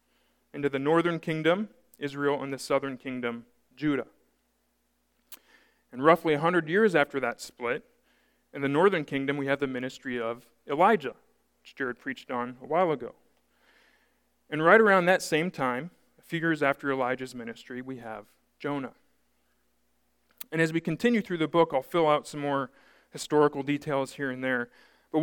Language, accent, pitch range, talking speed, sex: English, American, 135-165 Hz, 155 wpm, male